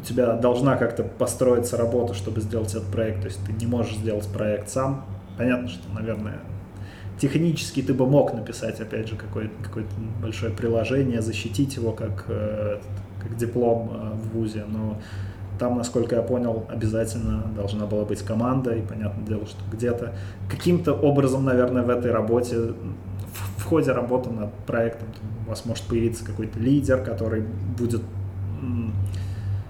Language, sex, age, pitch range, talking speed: Russian, male, 20-39, 105-120 Hz, 145 wpm